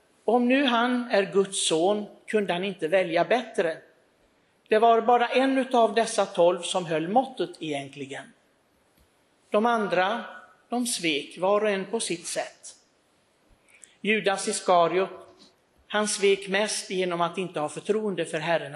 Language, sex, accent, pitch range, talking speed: Swedish, male, native, 180-225 Hz, 140 wpm